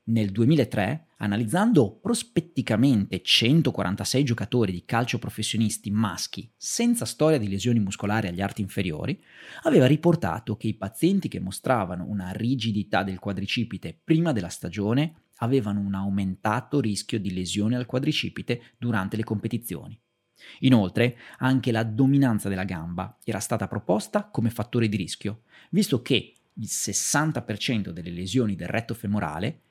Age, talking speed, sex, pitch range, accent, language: 30-49, 130 wpm, male, 100-135 Hz, native, Italian